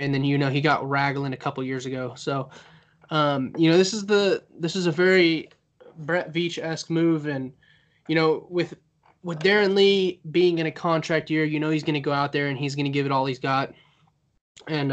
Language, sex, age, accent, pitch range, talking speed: English, male, 20-39, American, 140-165 Hz, 220 wpm